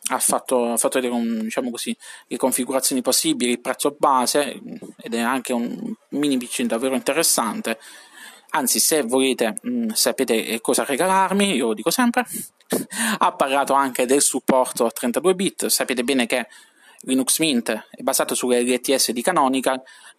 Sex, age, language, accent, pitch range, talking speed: male, 20-39, Italian, native, 120-145 Hz, 140 wpm